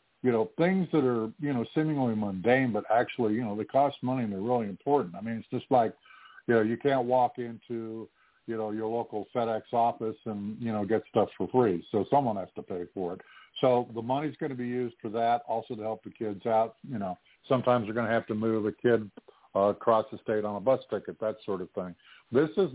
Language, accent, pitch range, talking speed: English, American, 110-130 Hz, 240 wpm